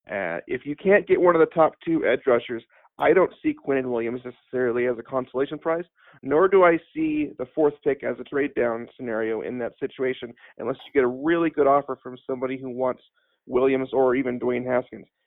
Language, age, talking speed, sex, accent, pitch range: English, 40-59, 210 wpm, male, American, 125-160 Hz